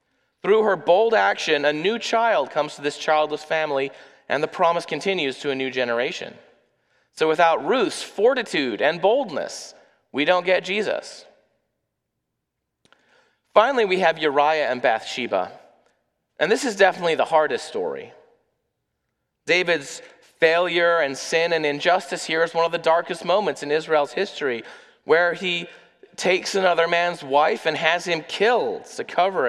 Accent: American